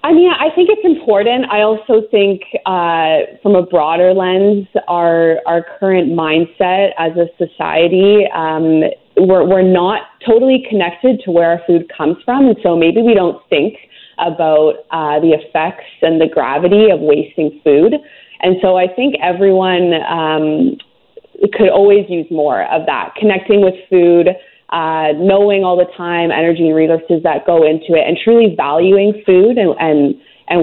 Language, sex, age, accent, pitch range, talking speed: English, female, 20-39, American, 165-200 Hz, 165 wpm